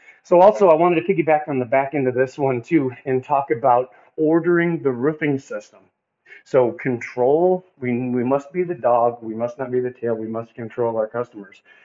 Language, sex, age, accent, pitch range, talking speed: English, male, 40-59, American, 115-145 Hz, 205 wpm